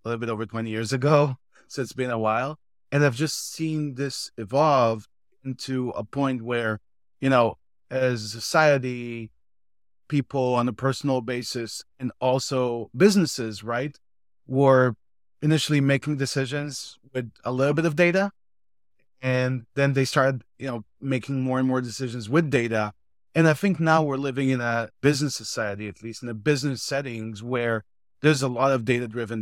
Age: 30-49